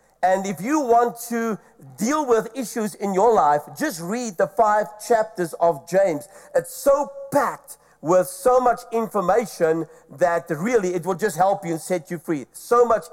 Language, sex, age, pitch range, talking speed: English, male, 50-69, 165-230 Hz, 175 wpm